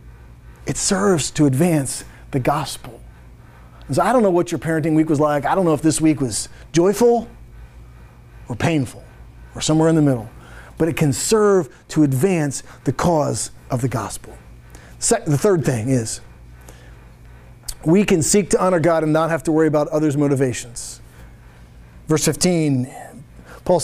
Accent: American